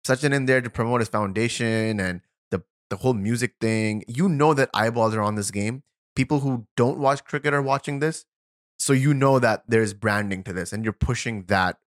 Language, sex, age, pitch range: English, male, 20-39, 100-135 Hz